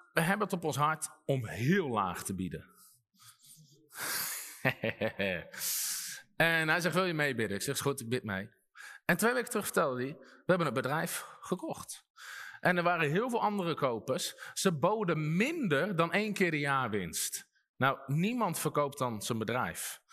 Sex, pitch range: male, 140-220 Hz